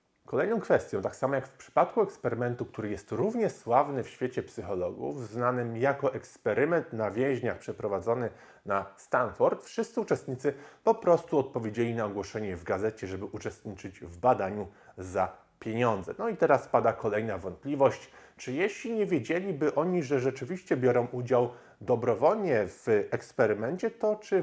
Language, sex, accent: Polish, male, native